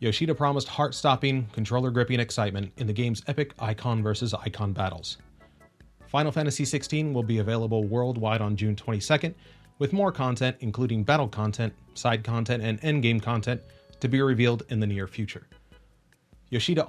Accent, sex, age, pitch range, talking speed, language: American, male, 30-49, 105-140 Hz, 140 wpm, English